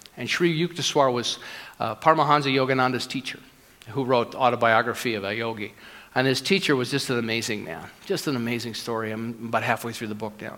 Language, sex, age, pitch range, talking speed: English, male, 50-69, 115-145 Hz, 195 wpm